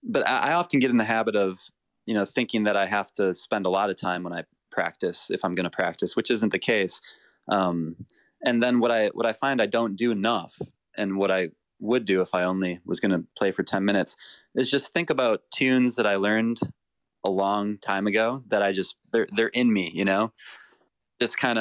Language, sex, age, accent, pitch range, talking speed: English, male, 20-39, American, 95-115 Hz, 230 wpm